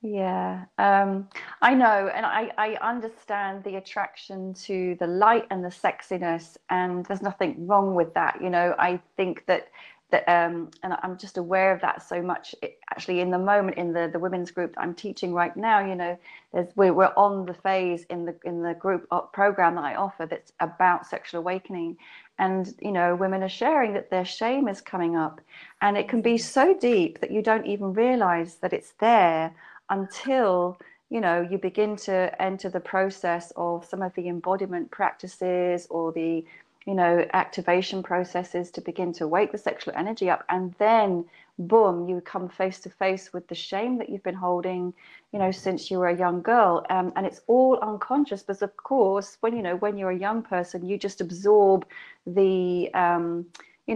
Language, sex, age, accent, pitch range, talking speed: English, female, 30-49, British, 175-205 Hz, 190 wpm